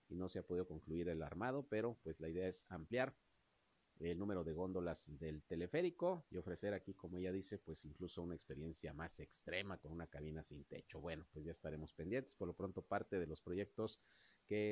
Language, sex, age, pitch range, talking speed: Spanish, male, 50-69, 85-115 Hz, 205 wpm